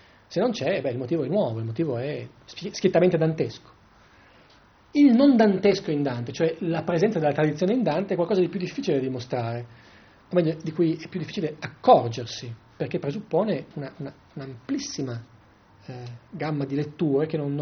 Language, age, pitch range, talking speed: Italian, 30-49, 130-175 Hz, 170 wpm